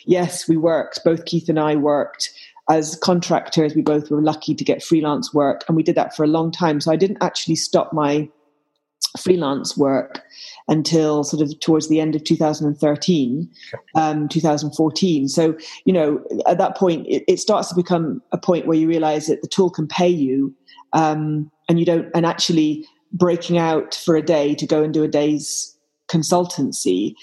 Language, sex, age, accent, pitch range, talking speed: English, female, 30-49, British, 150-175 Hz, 185 wpm